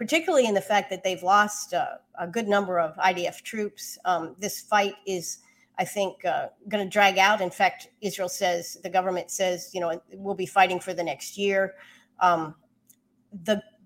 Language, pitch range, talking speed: English, 185-230 Hz, 180 wpm